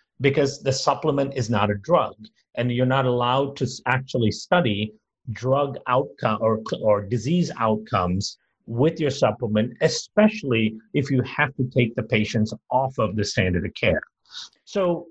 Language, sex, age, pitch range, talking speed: English, male, 50-69, 110-150 Hz, 150 wpm